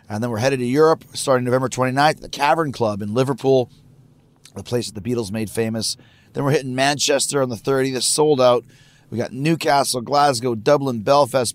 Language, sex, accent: English, male, American